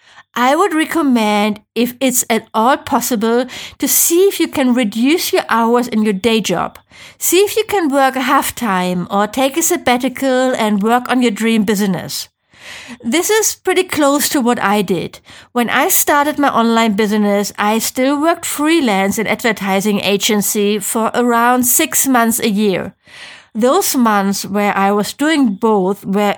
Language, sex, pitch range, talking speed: English, female, 210-270 Hz, 165 wpm